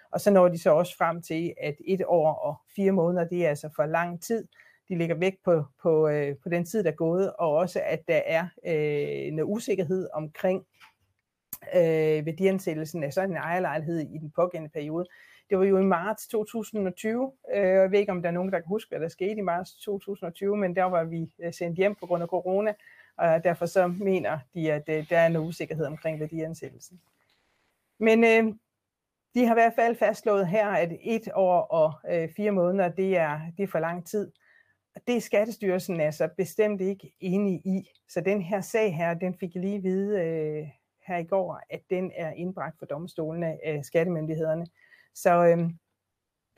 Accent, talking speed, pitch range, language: native, 190 wpm, 165-200 Hz, Danish